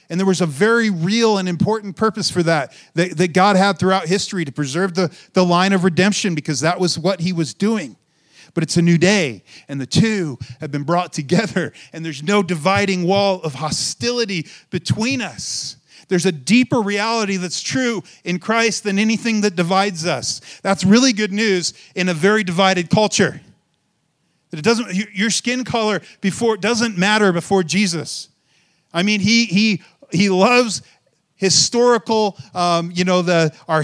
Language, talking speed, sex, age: English, 170 wpm, male, 40-59